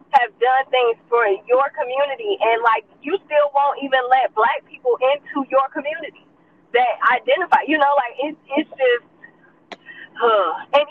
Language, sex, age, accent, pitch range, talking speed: English, female, 20-39, American, 245-360 Hz, 145 wpm